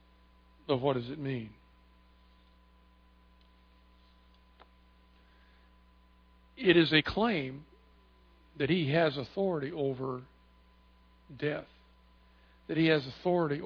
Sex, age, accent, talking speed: male, 60-79, American, 85 wpm